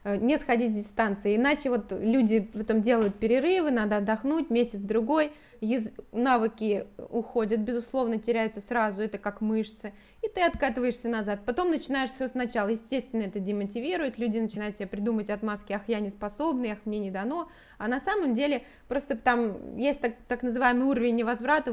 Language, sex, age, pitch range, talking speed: Russian, female, 20-39, 210-255 Hz, 160 wpm